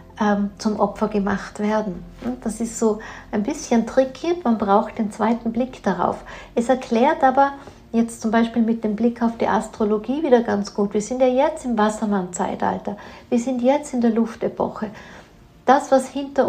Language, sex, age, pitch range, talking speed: German, female, 60-79, 205-245 Hz, 165 wpm